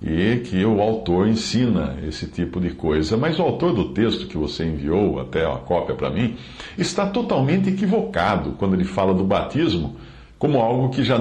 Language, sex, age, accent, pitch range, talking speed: Portuguese, male, 60-79, Brazilian, 90-125 Hz, 180 wpm